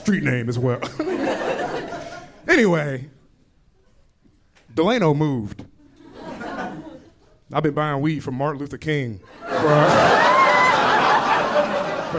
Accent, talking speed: American, 90 wpm